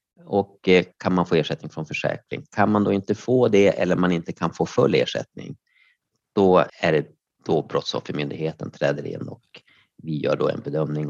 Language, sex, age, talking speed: Swedish, male, 30-49, 180 wpm